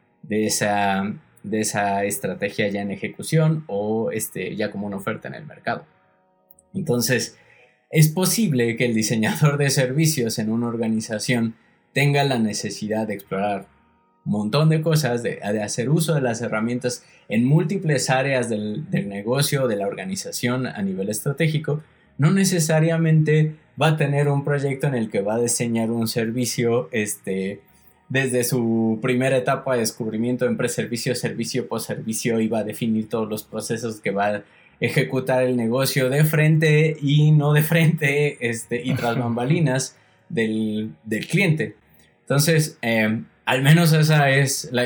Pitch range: 110-145 Hz